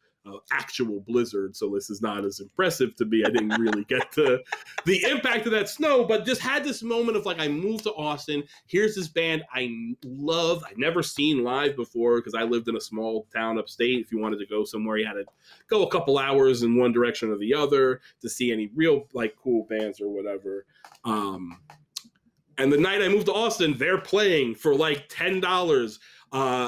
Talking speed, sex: 210 wpm, male